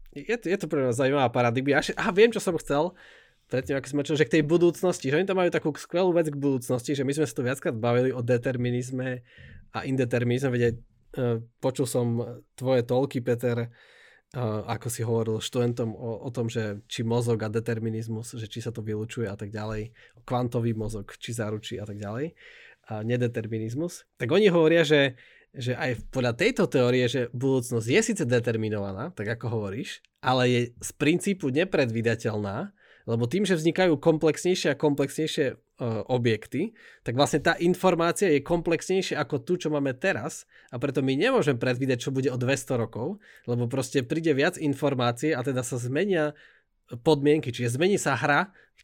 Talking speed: 175 wpm